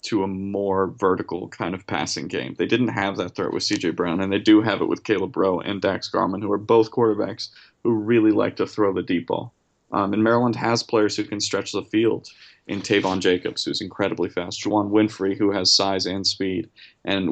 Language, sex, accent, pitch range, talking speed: English, male, American, 95-110 Hz, 220 wpm